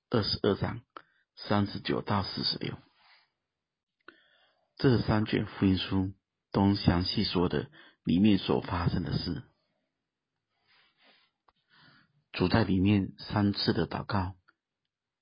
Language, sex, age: Chinese, male, 50-69